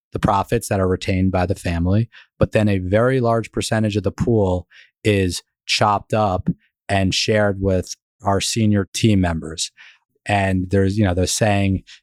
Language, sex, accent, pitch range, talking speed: English, male, American, 95-110 Hz, 165 wpm